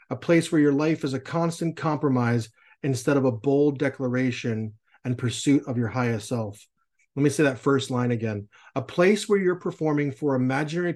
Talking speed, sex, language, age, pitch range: 185 wpm, male, English, 30-49, 130-150 Hz